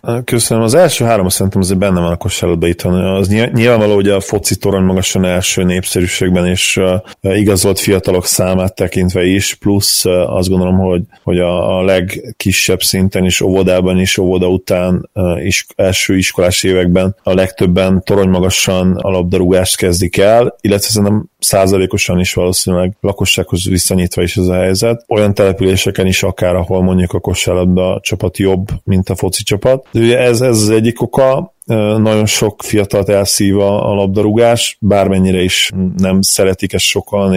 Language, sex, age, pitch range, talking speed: Hungarian, male, 20-39, 90-105 Hz, 155 wpm